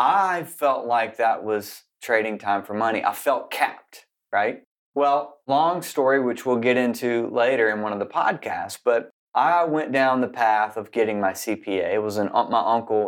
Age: 30-49